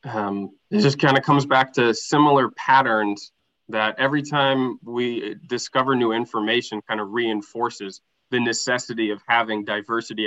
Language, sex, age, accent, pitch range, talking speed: English, male, 20-39, American, 110-140 Hz, 145 wpm